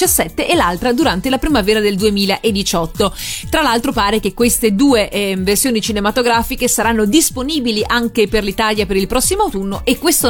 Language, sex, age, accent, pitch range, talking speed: Italian, female, 30-49, native, 205-245 Hz, 155 wpm